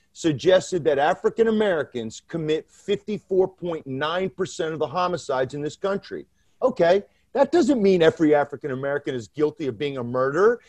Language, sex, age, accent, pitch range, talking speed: English, male, 40-59, American, 155-220 Hz, 140 wpm